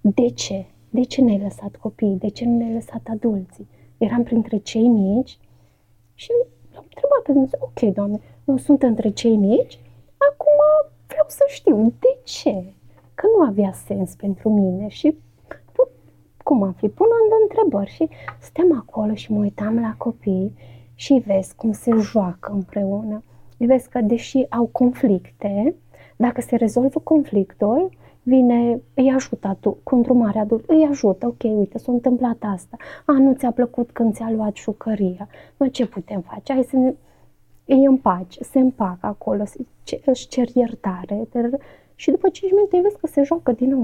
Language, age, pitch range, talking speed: Romanian, 20-39, 205-265 Hz, 165 wpm